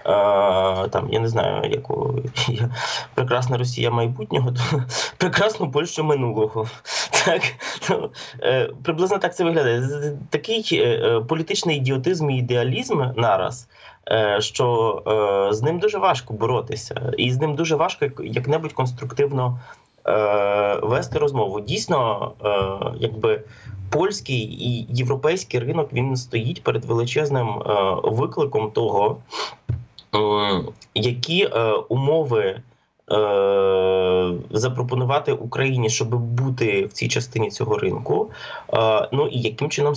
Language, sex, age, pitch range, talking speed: Ukrainian, male, 20-39, 115-145 Hz, 100 wpm